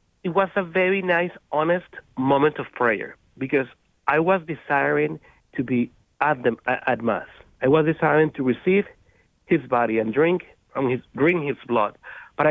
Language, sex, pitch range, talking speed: English, male, 135-175 Hz, 165 wpm